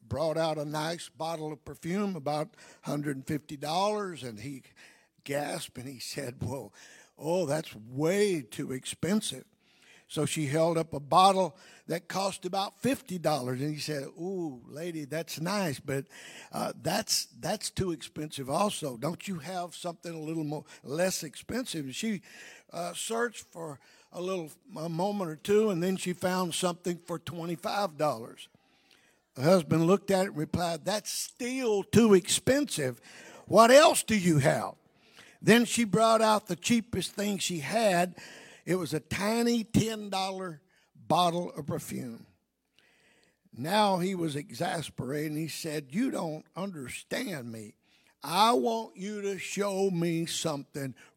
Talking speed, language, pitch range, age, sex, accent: 145 wpm, English, 150-195 Hz, 60-79, male, American